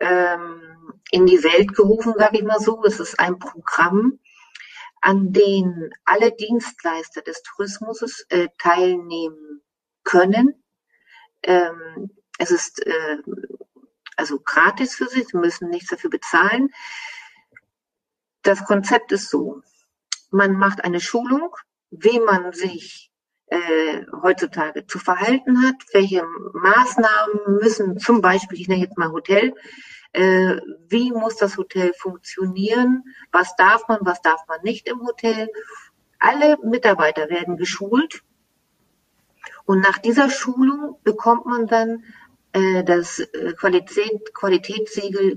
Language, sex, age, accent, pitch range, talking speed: German, female, 50-69, German, 180-235 Hz, 120 wpm